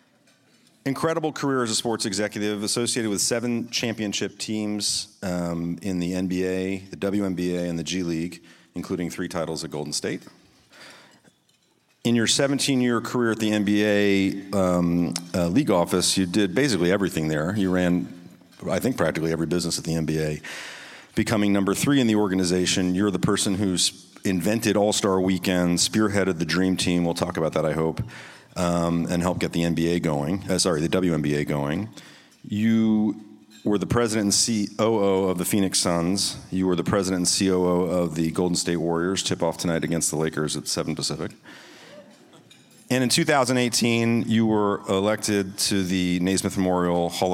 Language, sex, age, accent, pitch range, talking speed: English, male, 40-59, American, 85-105 Hz, 165 wpm